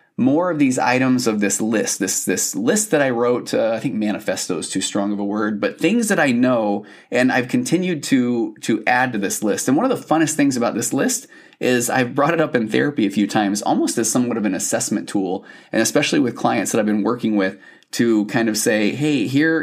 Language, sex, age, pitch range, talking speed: English, male, 20-39, 105-140 Hz, 240 wpm